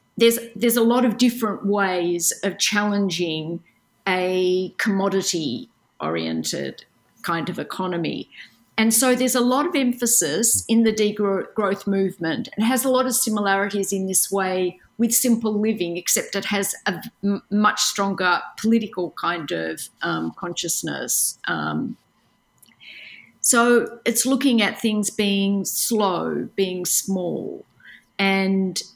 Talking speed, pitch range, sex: 125 wpm, 180-220 Hz, female